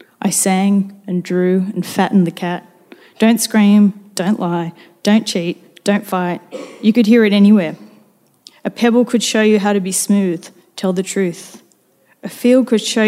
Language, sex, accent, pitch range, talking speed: English, female, Australian, 185-225 Hz, 170 wpm